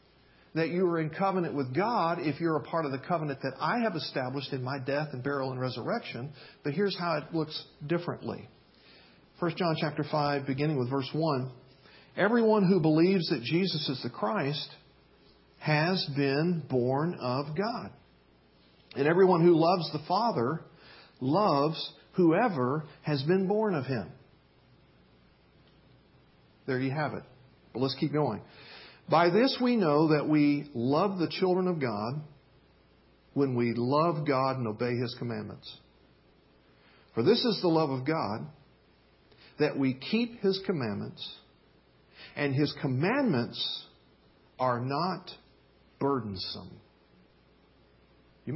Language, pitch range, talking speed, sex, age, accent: English, 130-175 Hz, 135 wpm, male, 50-69, American